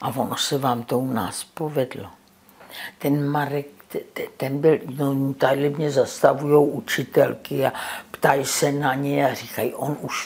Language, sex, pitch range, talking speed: Czech, female, 135-170 Hz, 160 wpm